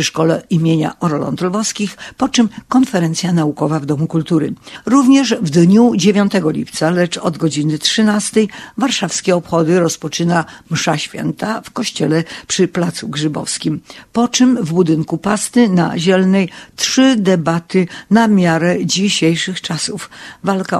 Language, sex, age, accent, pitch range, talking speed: Polish, female, 50-69, native, 160-200 Hz, 130 wpm